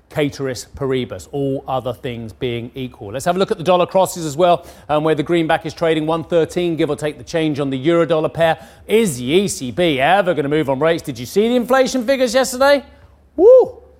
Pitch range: 130-175 Hz